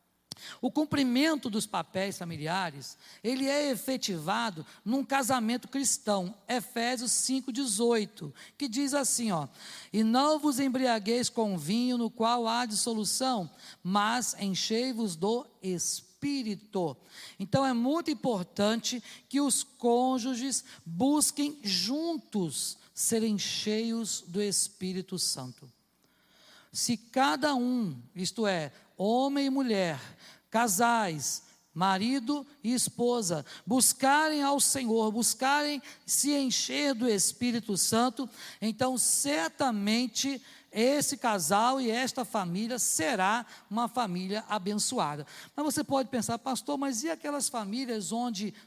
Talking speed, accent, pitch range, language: 105 wpm, Brazilian, 200-265 Hz, Portuguese